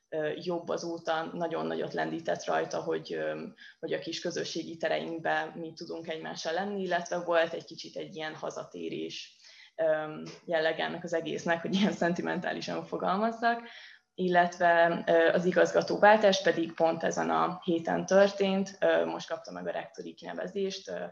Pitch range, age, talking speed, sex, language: 155-180 Hz, 20-39, 130 wpm, female, Hungarian